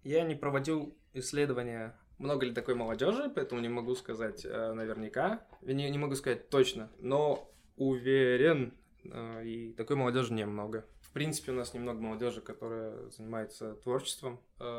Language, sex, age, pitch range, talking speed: Russian, male, 20-39, 110-130 Hz, 140 wpm